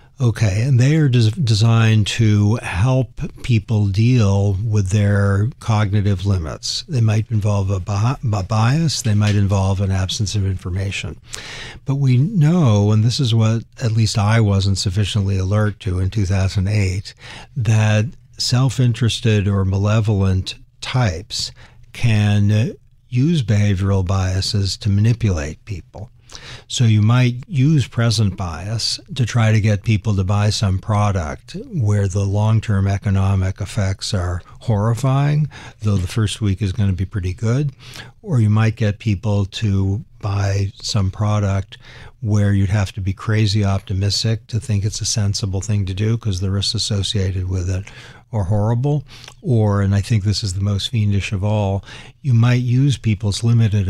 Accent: American